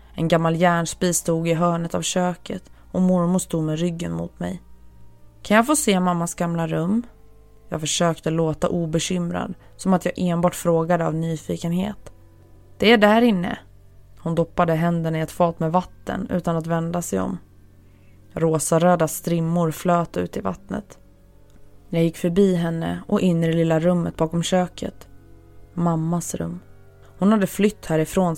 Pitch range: 110-180 Hz